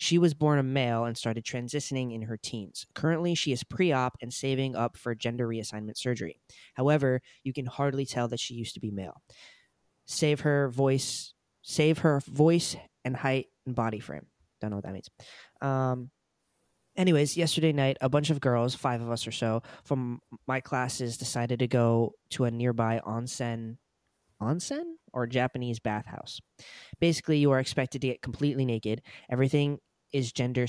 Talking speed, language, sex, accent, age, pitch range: 170 wpm, English, male, American, 20-39, 115-140 Hz